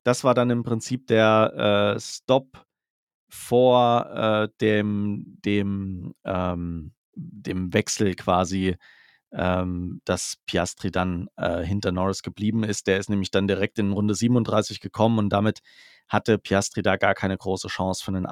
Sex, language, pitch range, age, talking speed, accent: male, German, 95-130 Hz, 40-59, 140 wpm, German